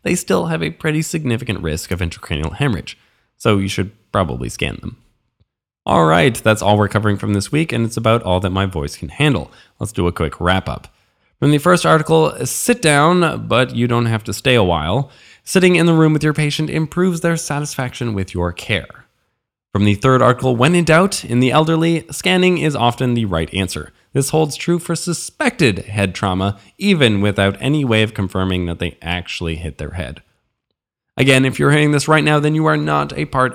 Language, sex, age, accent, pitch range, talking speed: English, male, 20-39, American, 100-160 Hz, 200 wpm